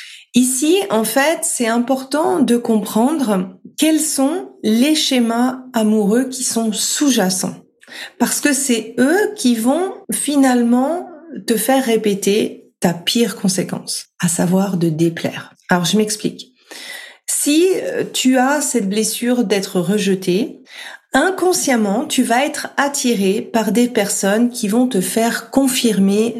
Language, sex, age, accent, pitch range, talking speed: French, female, 40-59, French, 200-255 Hz, 125 wpm